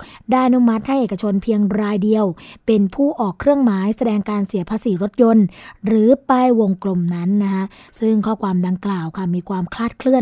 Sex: female